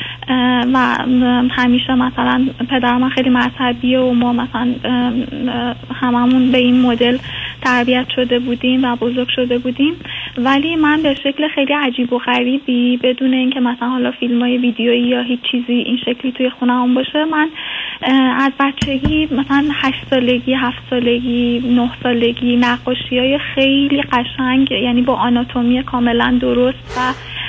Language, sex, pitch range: Persian, female, 245-260 Hz